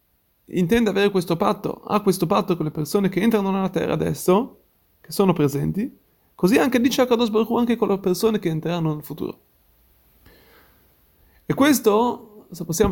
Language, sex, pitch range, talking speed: Italian, male, 160-200 Hz, 165 wpm